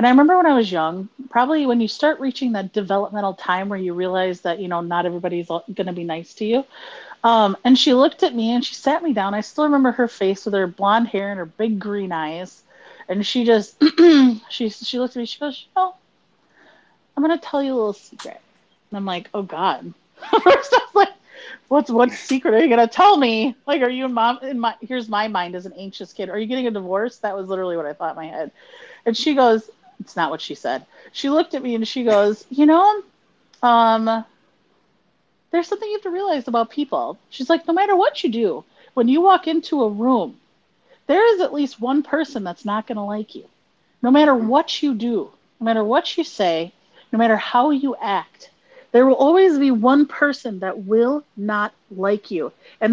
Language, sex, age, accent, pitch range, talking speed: English, female, 30-49, American, 205-285 Hz, 220 wpm